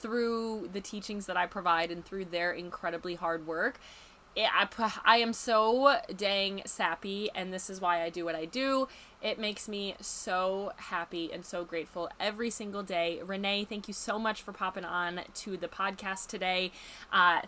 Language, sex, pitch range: English, female, 175-210 Hz